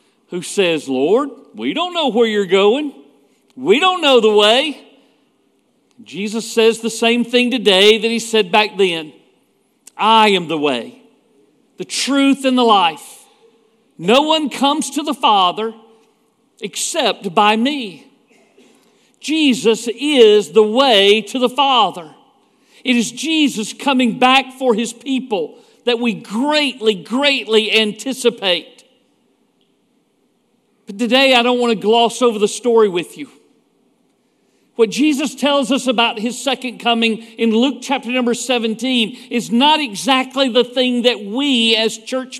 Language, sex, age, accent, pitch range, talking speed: English, male, 50-69, American, 220-265 Hz, 135 wpm